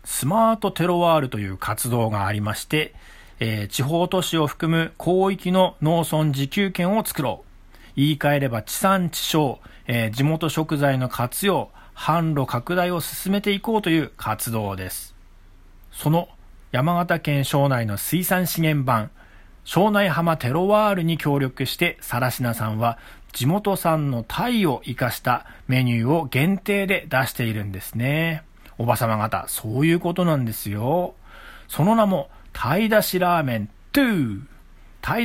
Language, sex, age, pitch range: Japanese, male, 40-59, 120-175 Hz